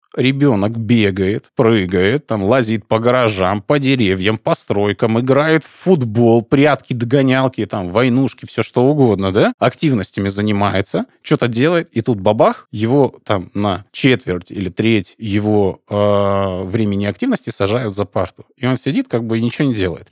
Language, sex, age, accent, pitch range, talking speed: Russian, male, 20-39, native, 105-135 Hz, 150 wpm